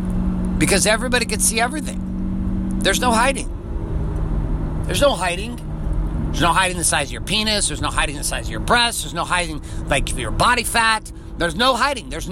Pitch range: 155-235 Hz